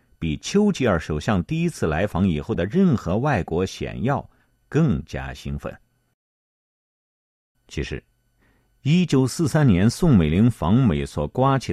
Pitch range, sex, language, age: 75-125 Hz, male, Chinese, 50-69